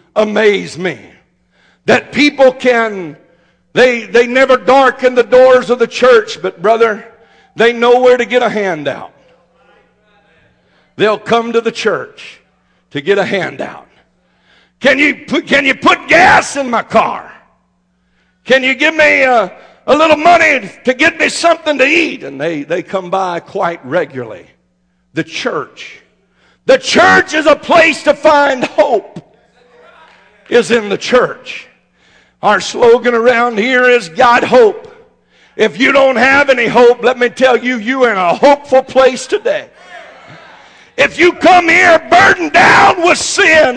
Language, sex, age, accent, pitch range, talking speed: English, male, 60-79, American, 230-315 Hz, 150 wpm